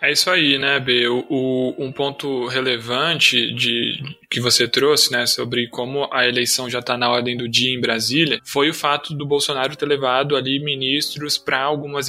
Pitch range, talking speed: 135-155 Hz, 190 wpm